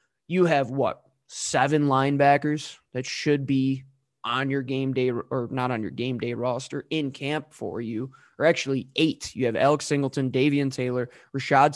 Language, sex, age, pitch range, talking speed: English, male, 20-39, 130-155 Hz, 170 wpm